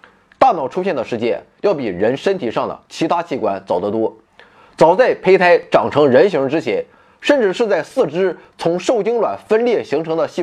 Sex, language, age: male, Chinese, 20-39